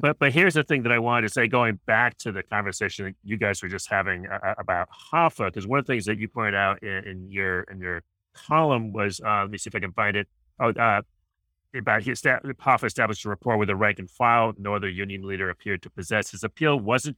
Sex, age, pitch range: male, 30-49, 95-120 Hz